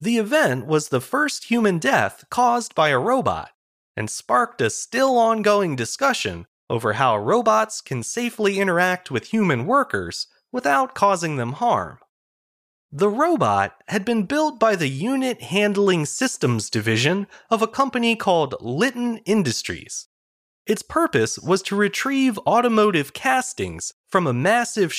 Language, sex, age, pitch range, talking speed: English, male, 30-49, 140-230 Hz, 135 wpm